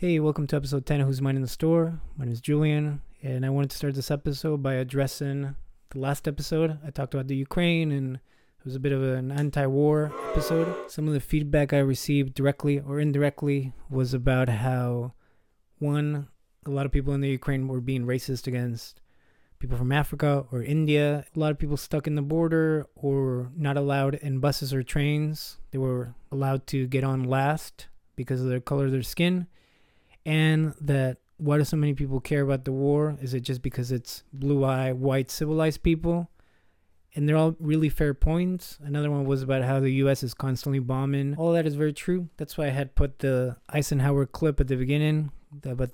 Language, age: English, 20-39